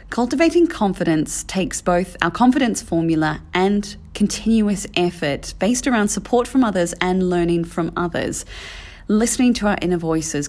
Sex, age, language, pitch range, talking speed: female, 30-49, English, 165-210 Hz, 135 wpm